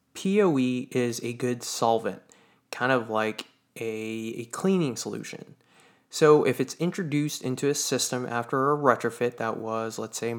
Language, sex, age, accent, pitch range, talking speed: English, male, 20-39, American, 115-150 Hz, 150 wpm